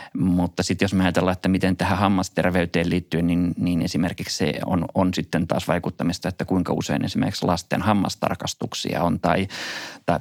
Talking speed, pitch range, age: 165 wpm, 90-100 Hz, 30-49